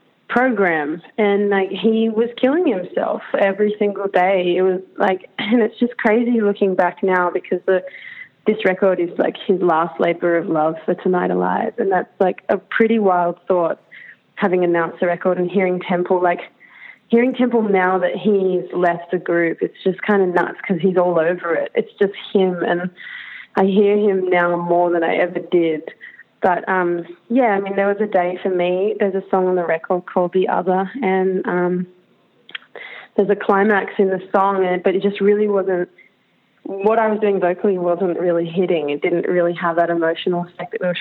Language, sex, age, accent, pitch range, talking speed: English, female, 20-39, Australian, 175-205 Hz, 190 wpm